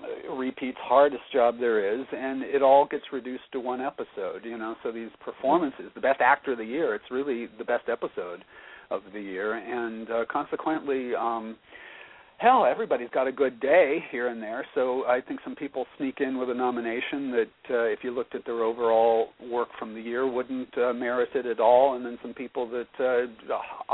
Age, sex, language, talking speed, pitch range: 50-69, male, English, 200 wpm, 120-135 Hz